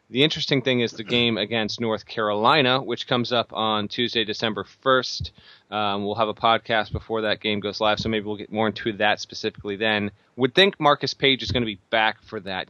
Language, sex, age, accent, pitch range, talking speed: English, male, 30-49, American, 105-125 Hz, 215 wpm